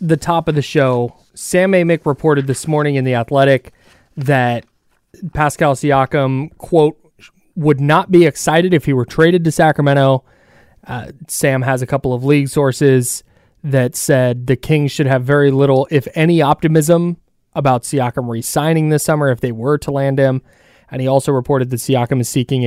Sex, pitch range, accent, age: male, 130-160 Hz, American, 20-39